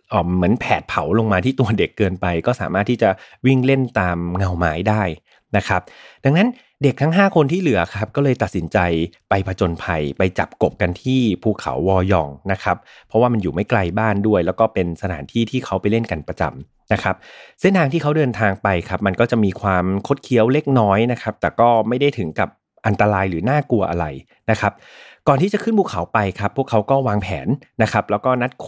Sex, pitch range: male, 95-130 Hz